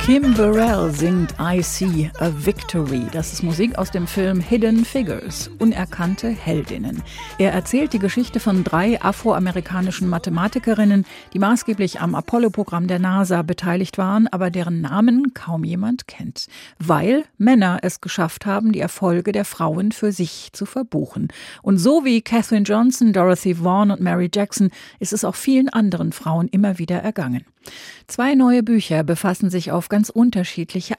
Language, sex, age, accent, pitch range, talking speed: German, female, 40-59, German, 175-225 Hz, 155 wpm